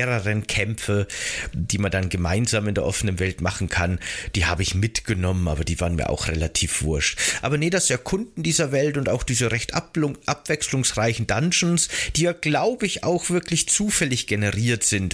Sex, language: male, German